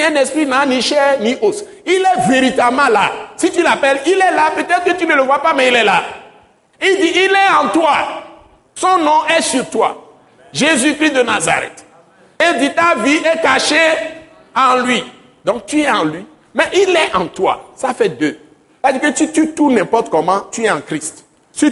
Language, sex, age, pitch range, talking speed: French, male, 60-79, 260-330 Hz, 205 wpm